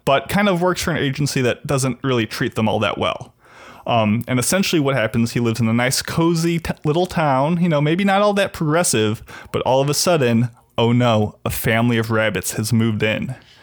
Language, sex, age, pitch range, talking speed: English, male, 20-39, 115-150 Hz, 215 wpm